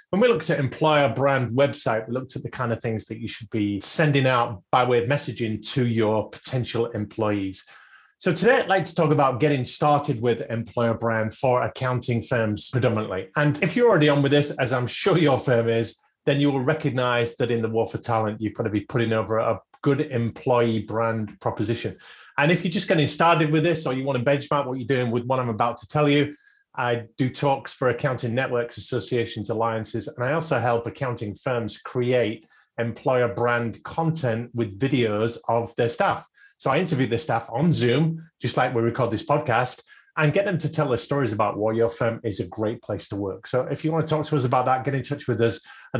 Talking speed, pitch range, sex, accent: 220 wpm, 115-145 Hz, male, British